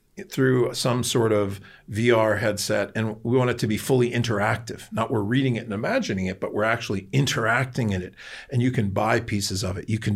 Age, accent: 50-69, American